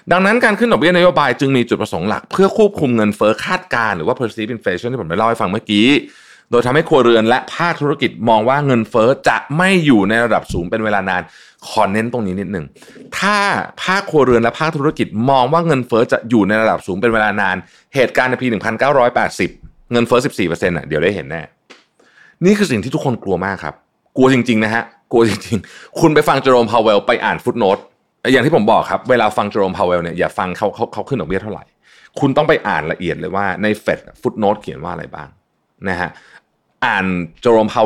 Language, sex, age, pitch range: Thai, male, 20-39, 110-170 Hz